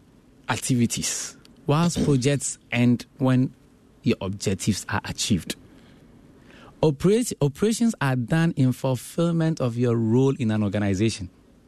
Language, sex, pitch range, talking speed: English, male, 105-140 Hz, 105 wpm